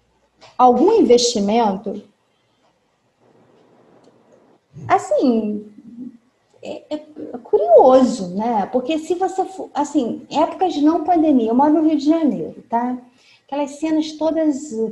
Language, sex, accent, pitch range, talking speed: Portuguese, female, Brazilian, 220-285 Hz, 110 wpm